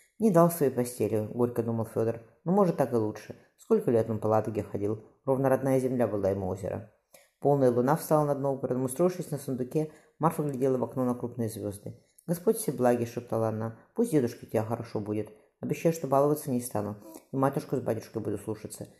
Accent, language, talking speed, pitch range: native, Russian, 195 wpm, 115-155 Hz